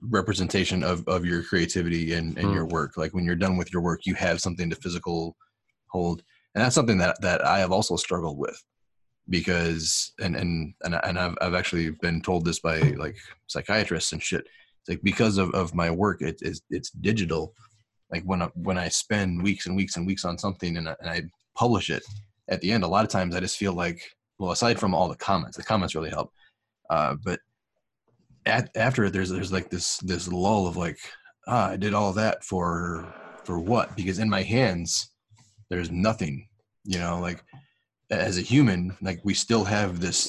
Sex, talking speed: male, 200 wpm